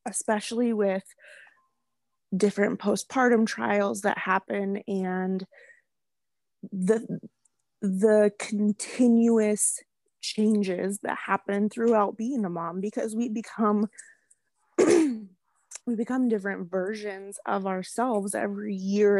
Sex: female